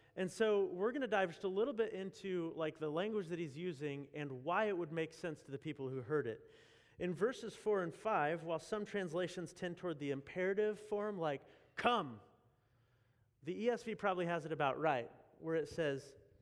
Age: 30-49